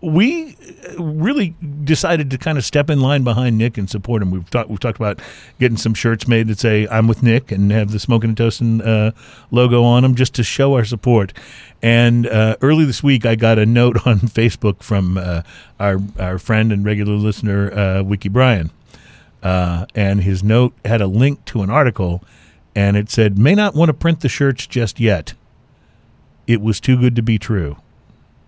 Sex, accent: male, American